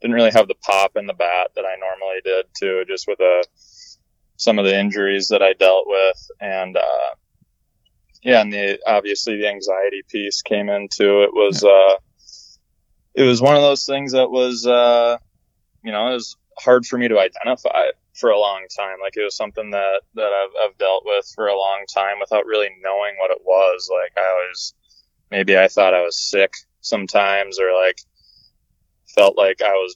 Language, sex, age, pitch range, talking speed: English, male, 20-39, 95-120 Hz, 195 wpm